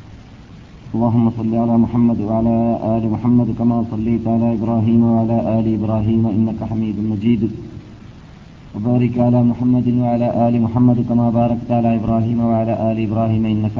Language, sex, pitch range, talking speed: Malayalam, male, 105-120 Hz, 135 wpm